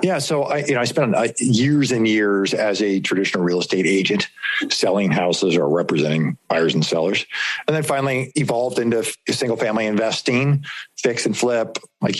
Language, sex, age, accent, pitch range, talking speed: English, male, 50-69, American, 100-130 Hz, 170 wpm